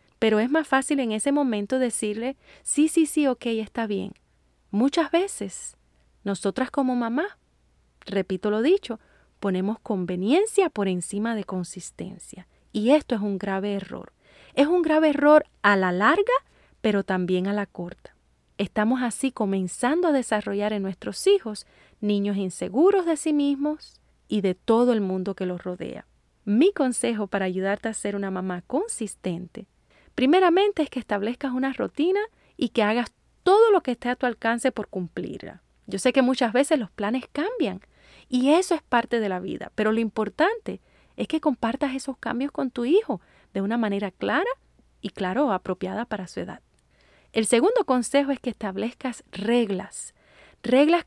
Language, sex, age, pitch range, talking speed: Spanish, female, 30-49, 200-285 Hz, 160 wpm